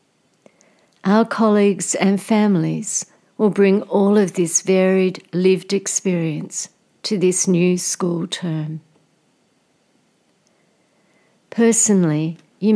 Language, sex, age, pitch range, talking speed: English, female, 60-79, 170-200 Hz, 90 wpm